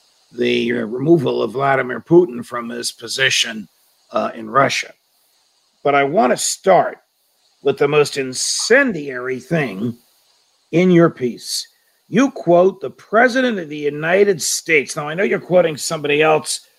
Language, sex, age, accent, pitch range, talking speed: English, male, 50-69, American, 145-205 Hz, 140 wpm